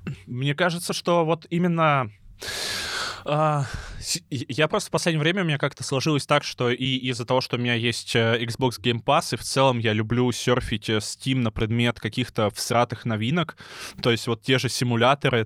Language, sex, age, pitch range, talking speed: Russian, male, 20-39, 105-130 Hz, 175 wpm